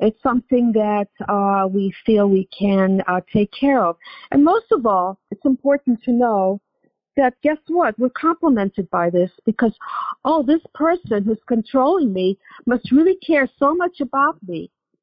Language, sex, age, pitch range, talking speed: English, female, 50-69, 205-270 Hz, 165 wpm